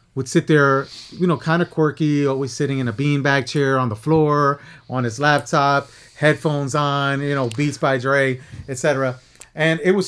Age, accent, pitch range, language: 30-49, American, 135-170 Hz, English